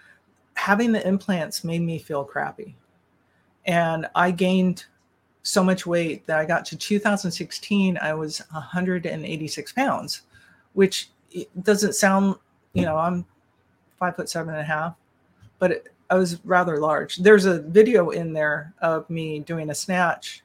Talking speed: 145 wpm